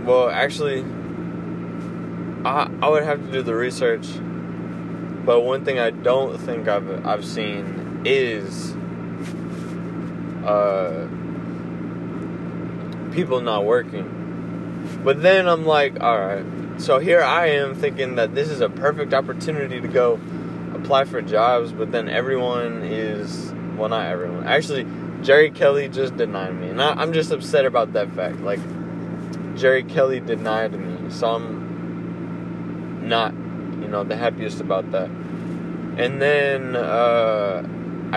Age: 20-39